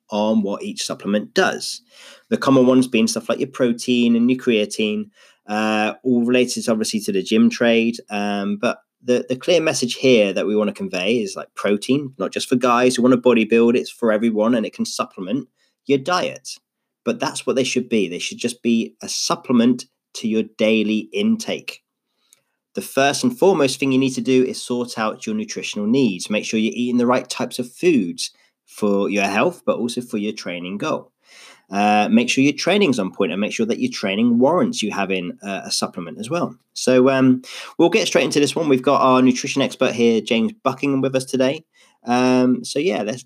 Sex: male